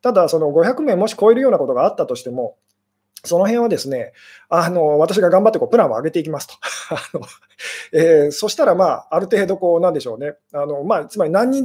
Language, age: Japanese, 20-39